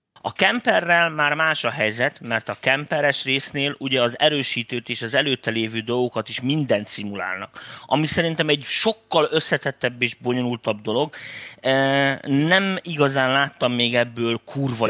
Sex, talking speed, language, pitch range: male, 140 wpm, Hungarian, 110-145 Hz